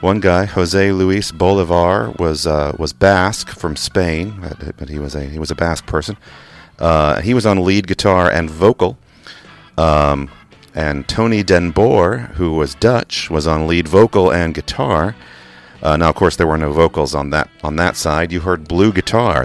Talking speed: 180 wpm